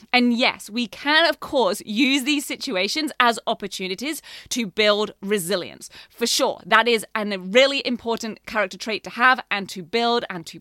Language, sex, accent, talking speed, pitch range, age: English, female, British, 170 wpm, 205-265 Hz, 30-49